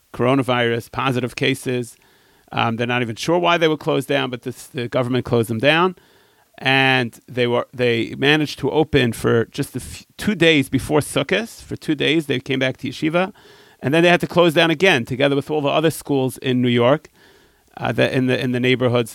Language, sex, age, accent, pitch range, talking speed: English, male, 40-59, American, 125-155 Hz, 210 wpm